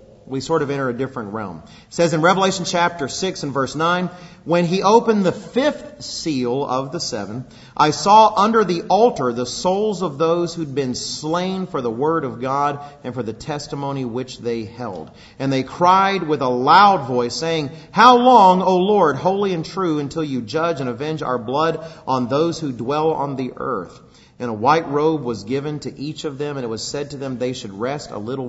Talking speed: 210 wpm